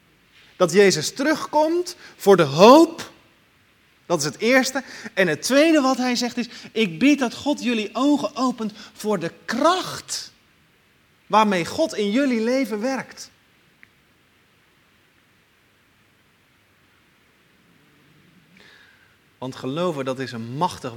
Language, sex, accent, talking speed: Dutch, male, Dutch, 110 wpm